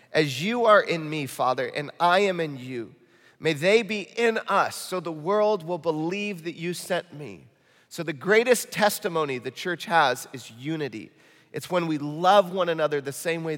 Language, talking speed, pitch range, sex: English, 190 wpm, 145-190 Hz, male